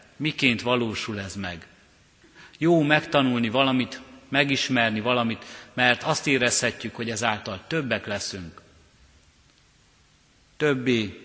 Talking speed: 90 wpm